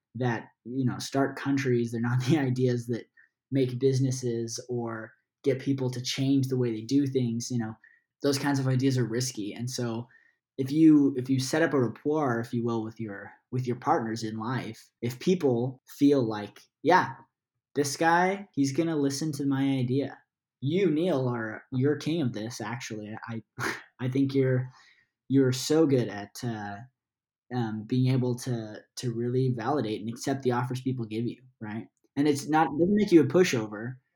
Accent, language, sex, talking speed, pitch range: American, English, male, 185 wpm, 115-135 Hz